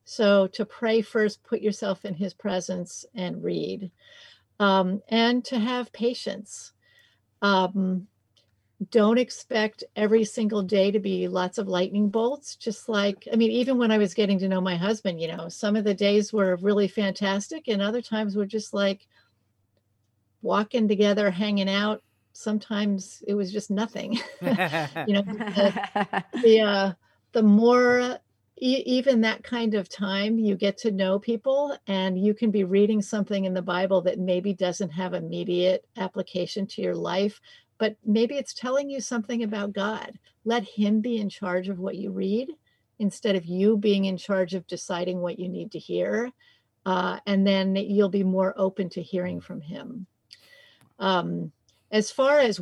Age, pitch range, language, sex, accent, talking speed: 50-69, 190-220 Hz, English, female, American, 165 wpm